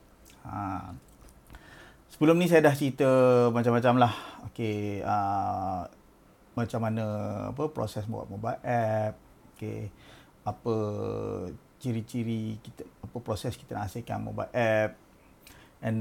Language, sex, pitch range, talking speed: Malay, male, 110-130 Hz, 110 wpm